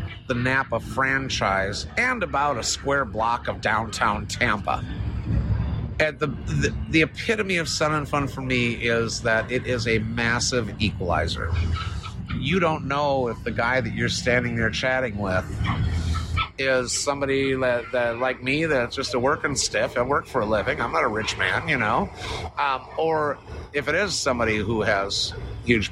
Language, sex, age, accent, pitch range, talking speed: English, male, 50-69, American, 105-130 Hz, 170 wpm